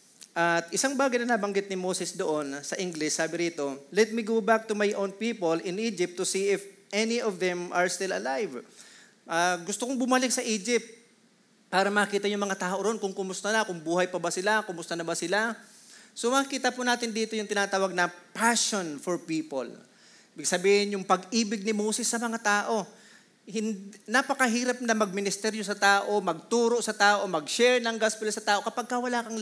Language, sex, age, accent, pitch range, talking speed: Filipino, male, 30-49, native, 180-225 Hz, 190 wpm